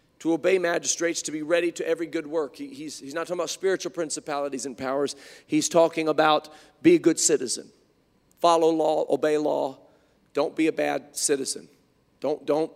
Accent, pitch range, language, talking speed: American, 150-195 Hz, English, 170 wpm